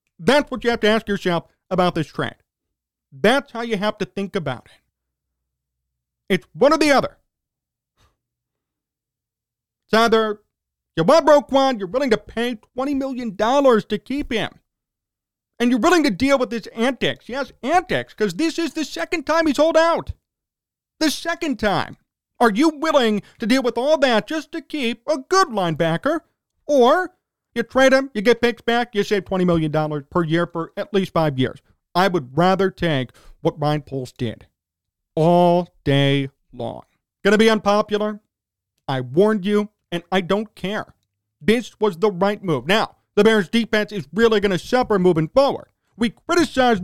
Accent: American